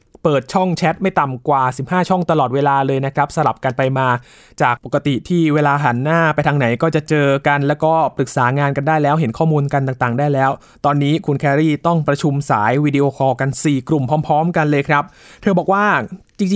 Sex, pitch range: male, 130-160 Hz